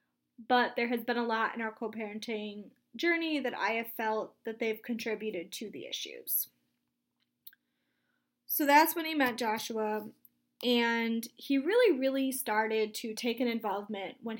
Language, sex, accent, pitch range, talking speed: English, female, American, 215-255 Hz, 150 wpm